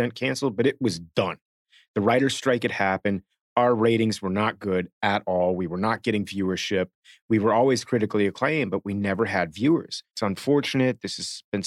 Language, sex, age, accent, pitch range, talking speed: English, male, 30-49, American, 100-120 Hz, 190 wpm